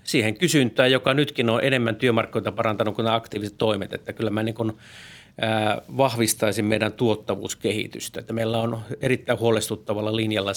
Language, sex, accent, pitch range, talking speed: Finnish, male, native, 105-115 Hz, 140 wpm